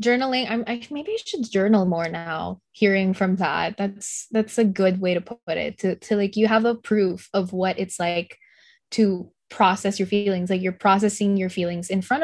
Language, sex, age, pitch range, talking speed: English, female, 10-29, 190-235 Hz, 205 wpm